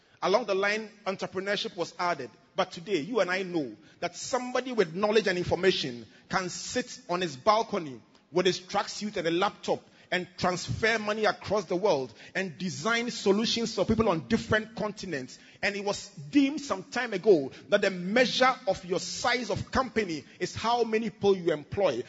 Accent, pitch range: Nigerian, 165-220 Hz